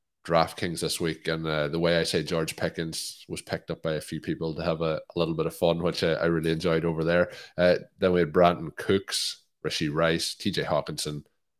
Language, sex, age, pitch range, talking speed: English, male, 20-39, 80-90 Hz, 230 wpm